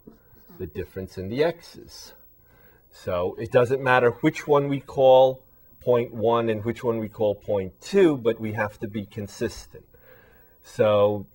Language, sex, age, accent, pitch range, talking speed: English, male, 40-59, American, 90-110 Hz, 155 wpm